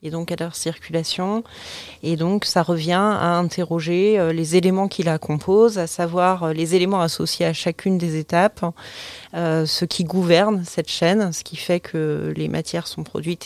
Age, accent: 30-49, French